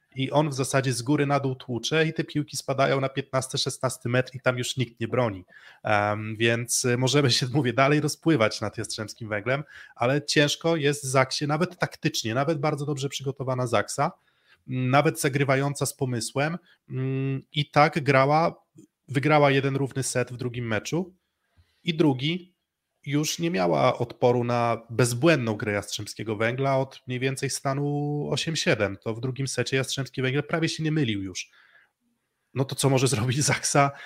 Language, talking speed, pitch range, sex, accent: Polish, 160 wpm, 120-145 Hz, male, native